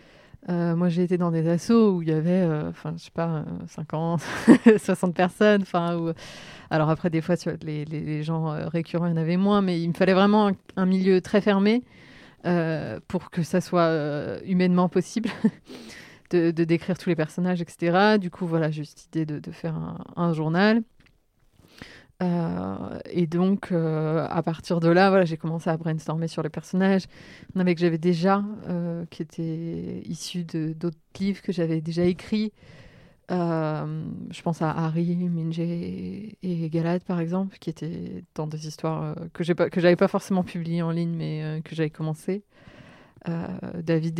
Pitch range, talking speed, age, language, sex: 160-180 Hz, 185 wpm, 30-49, French, female